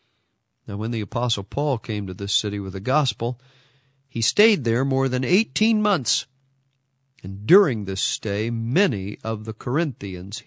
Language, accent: English, American